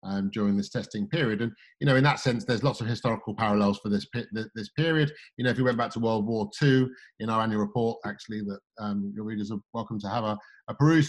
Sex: male